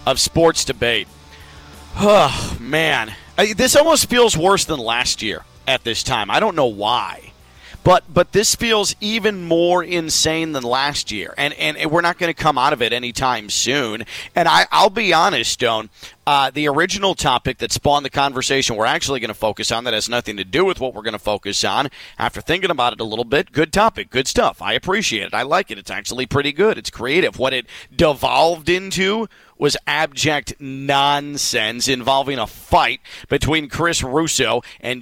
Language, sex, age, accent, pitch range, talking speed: English, male, 40-59, American, 120-170 Hz, 190 wpm